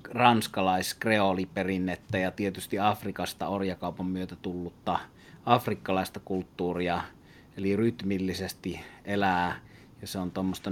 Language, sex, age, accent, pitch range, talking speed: Finnish, male, 30-49, native, 95-110 Hz, 90 wpm